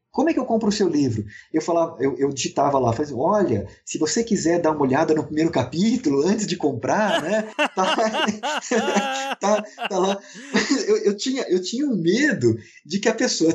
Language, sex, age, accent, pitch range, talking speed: Portuguese, male, 20-39, Brazilian, 160-225 Hz, 195 wpm